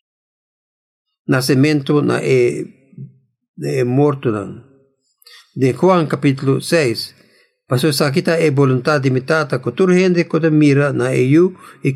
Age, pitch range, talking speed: 50-69, 135-165 Hz, 135 wpm